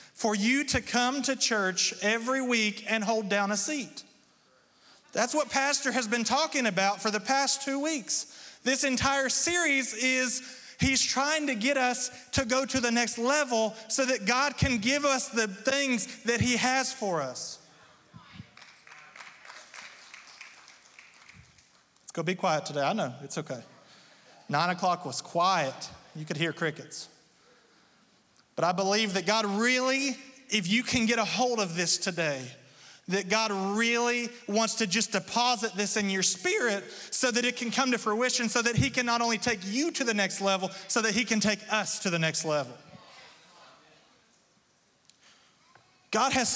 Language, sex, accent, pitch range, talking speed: English, male, American, 195-255 Hz, 160 wpm